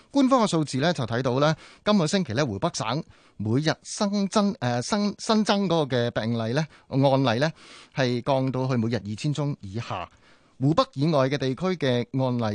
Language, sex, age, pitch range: Chinese, male, 30-49, 110-145 Hz